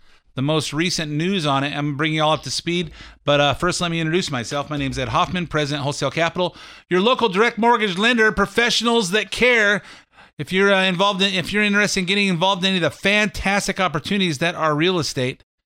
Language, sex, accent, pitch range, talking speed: English, male, American, 155-205 Hz, 220 wpm